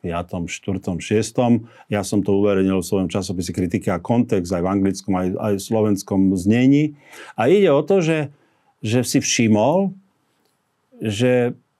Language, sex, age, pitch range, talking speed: Slovak, male, 50-69, 110-140 Hz, 145 wpm